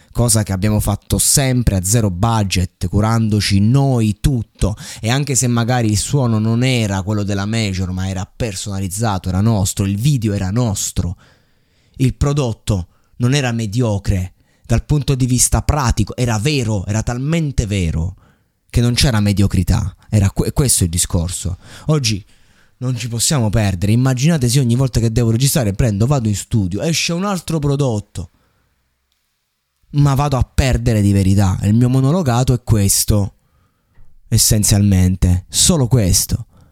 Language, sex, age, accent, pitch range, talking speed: Italian, male, 20-39, native, 100-130 Hz, 145 wpm